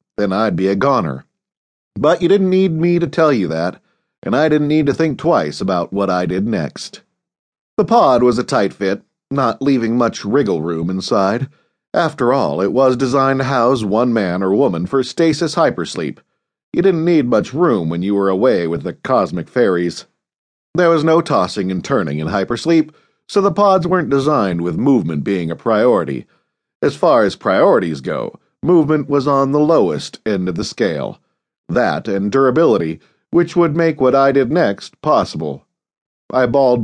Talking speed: 180 wpm